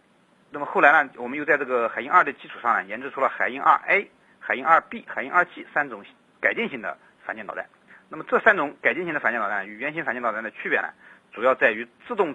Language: Chinese